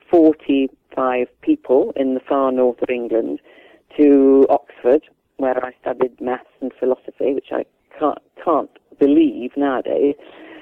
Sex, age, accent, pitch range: female, 40-59, British, 130-160 Hz